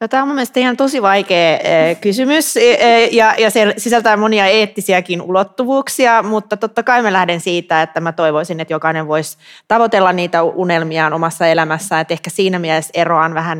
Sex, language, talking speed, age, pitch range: female, Finnish, 165 wpm, 30-49, 160-190 Hz